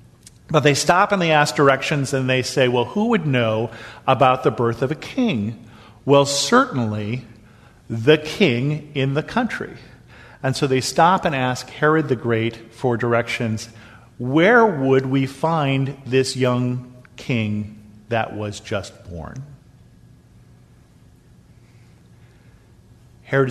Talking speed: 130 wpm